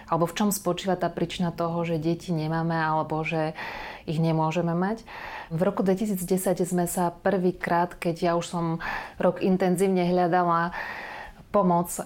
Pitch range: 165-180 Hz